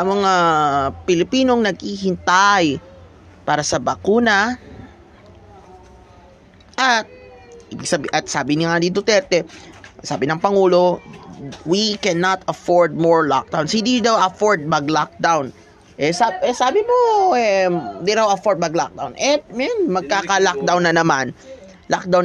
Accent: native